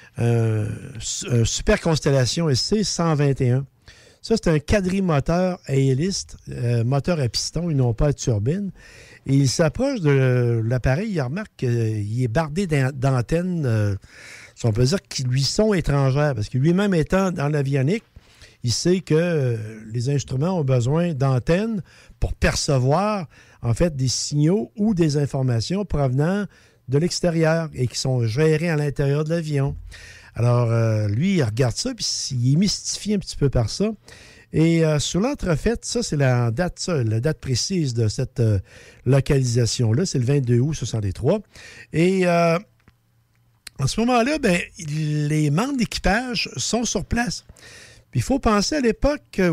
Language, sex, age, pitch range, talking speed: French, male, 60-79, 120-175 Hz, 160 wpm